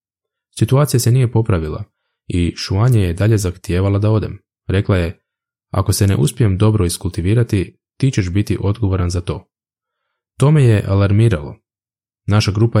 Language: Croatian